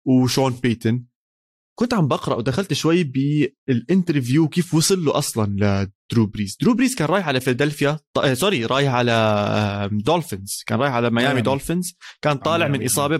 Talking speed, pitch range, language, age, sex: 150 wpm, 115-150 Hz, Arabic, 20-39, male